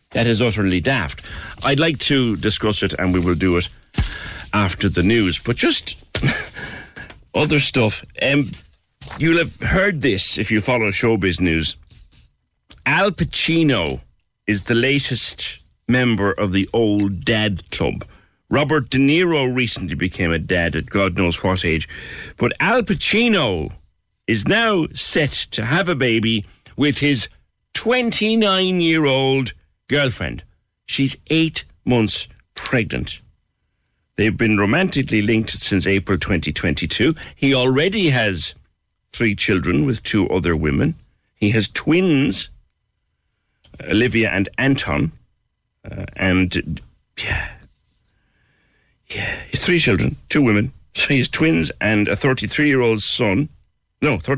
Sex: male